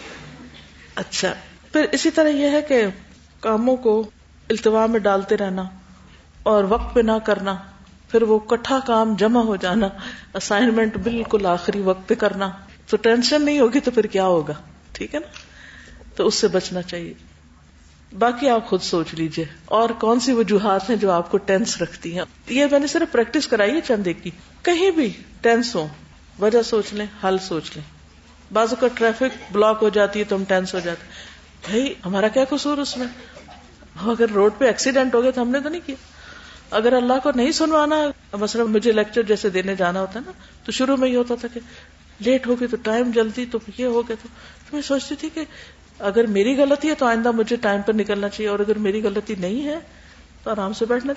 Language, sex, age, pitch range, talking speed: Urdu, female, 50-69, 195-250 Hz, 195 wpm